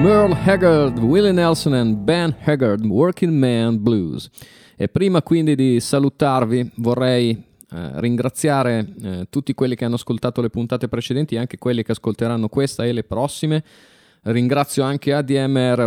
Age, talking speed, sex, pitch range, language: 30-49, 135 wpm, male, 115-140 Hz, Italian